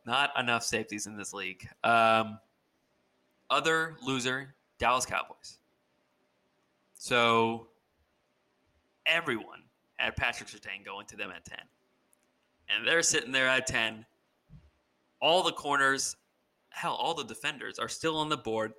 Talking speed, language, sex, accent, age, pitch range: 125 wpm, English, male, American, 20-39, 115-160 Hz